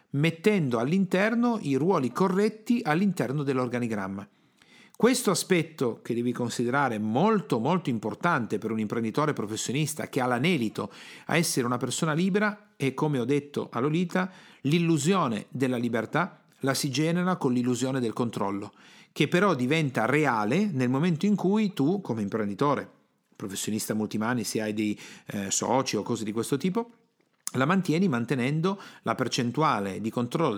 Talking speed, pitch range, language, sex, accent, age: 145 wpm, 120-175 Hz, Italian, male, native, 40-59